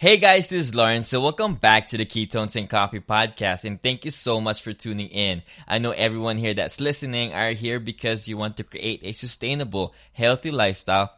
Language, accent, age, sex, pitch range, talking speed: English, Filipino, 20-39, male, 95-120 Hz, 210 wpm